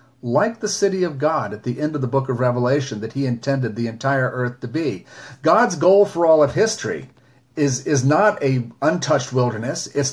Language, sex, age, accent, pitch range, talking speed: English, male, 40-59, American, 125-150 Hz, 200 wpm